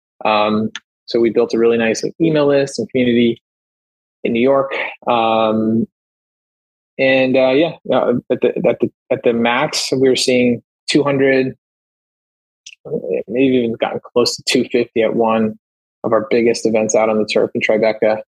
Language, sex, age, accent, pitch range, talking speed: English, male, 20-39, American, 110-130 Hz, 165 wpm